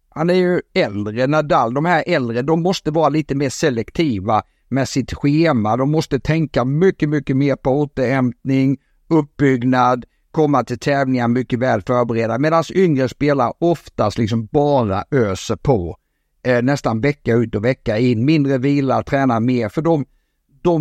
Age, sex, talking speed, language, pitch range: 60-79, male, 155 wpm, Swedish, 120-150 Hz